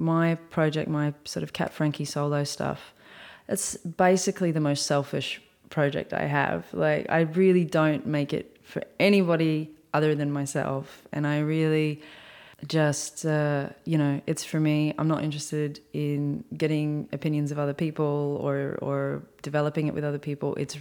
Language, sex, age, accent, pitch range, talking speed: English, female, 20-39, Australian, 145-160 Hz, 160 wpm